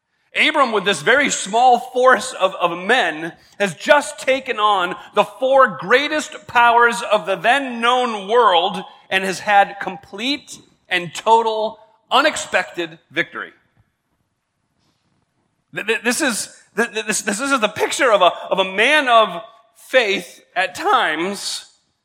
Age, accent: 40-59, American